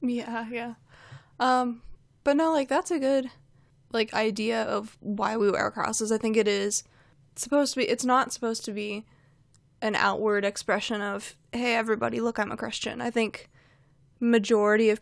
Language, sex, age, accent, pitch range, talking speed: English, female, 20-39, American, 145-230 Hz, 170 wpm